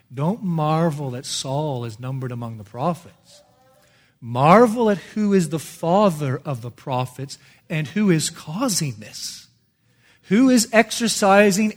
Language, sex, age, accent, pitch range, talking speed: English, male, 40-59, American, 135-175 Hz, 135 wpm